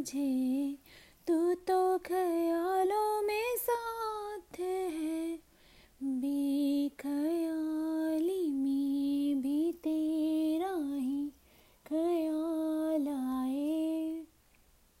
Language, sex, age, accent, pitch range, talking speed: Hindi, female, 20-39, native, 280-320 Hz, 50 wpm